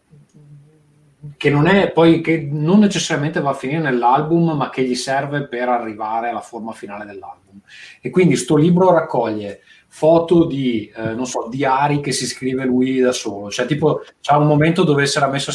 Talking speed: 185 wpm